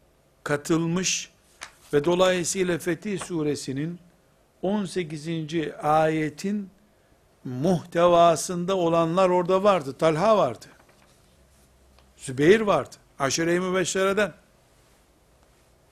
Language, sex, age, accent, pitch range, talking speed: Turkish, male, 60-79, native, 140-190 Hz, 65 wpm